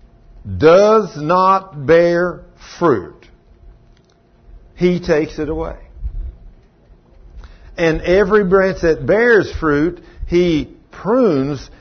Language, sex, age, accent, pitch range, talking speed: English, male, 60-79, American, 140-205 Hz, 80 wpm